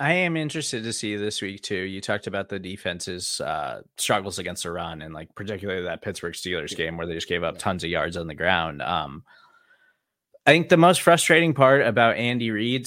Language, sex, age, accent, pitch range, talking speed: English, male, 20-39, American, 110-155 Hz, 215 wpm